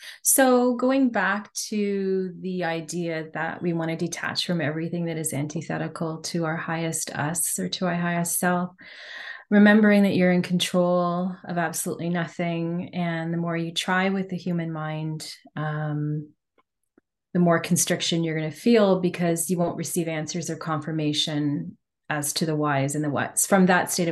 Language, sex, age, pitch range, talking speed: English, female, 30-49, 165-185 Hz, 165 wpm